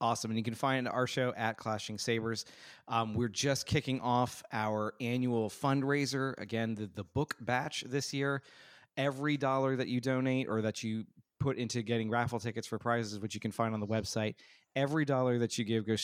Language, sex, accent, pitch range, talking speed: English, male, American, 105-130 Hz, 200 wpm